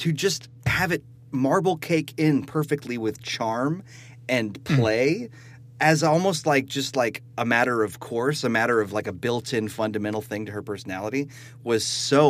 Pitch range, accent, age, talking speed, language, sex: 115-145 Hz, American, 30-49, 165 wpm, English, male